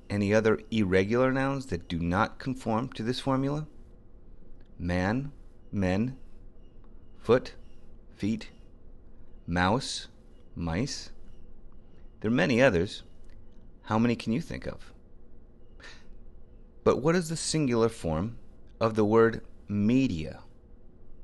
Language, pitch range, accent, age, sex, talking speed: English, 95-125 Hz, American, 30-49, male, 105 wpm